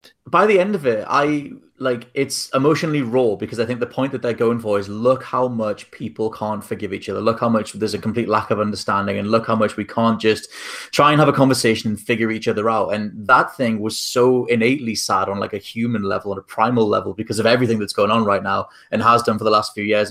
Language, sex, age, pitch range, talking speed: English, male, 20-39, 105-130 Hz, 255 wpm